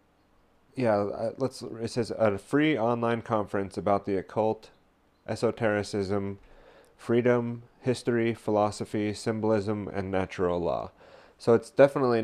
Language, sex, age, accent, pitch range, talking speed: English, male, 30-49, American, 90-110 Hz, 110 wpm